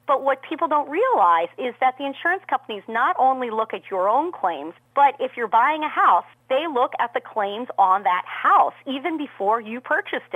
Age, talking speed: 40-59, 205 wpm